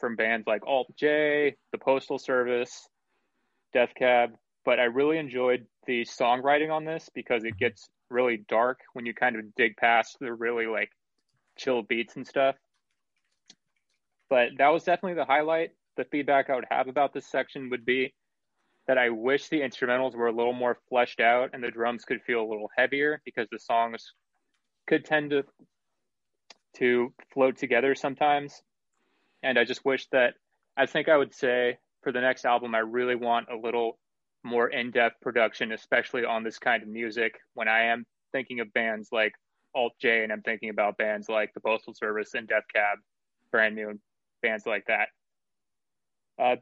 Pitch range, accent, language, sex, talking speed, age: 115-140 Hz, American, English, male, 170 wpm, 20-39